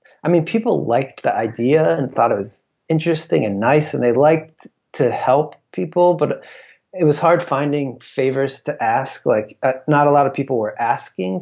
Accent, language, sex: American, English, male